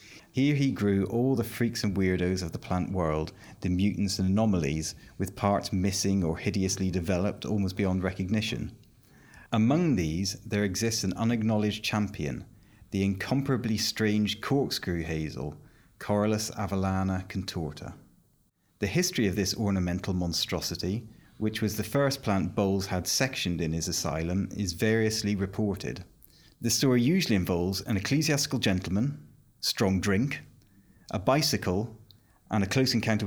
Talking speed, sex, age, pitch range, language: 135 wpm, male, 30-49, 95-115 Hz, English